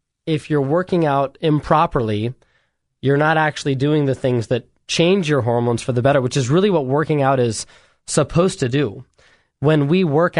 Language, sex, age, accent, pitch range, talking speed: English, male, 20-39, American, 130-155 Hz, 180 wpm